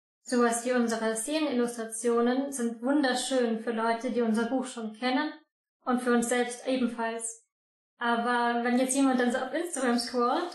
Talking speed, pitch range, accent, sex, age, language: 155 wpm, 235-265 Hz, German, female, 20-39, German